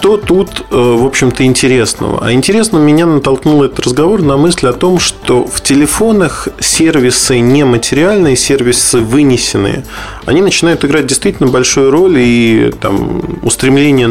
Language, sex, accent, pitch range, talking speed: Russian, male, native, 105-135 Hz, 130 wpm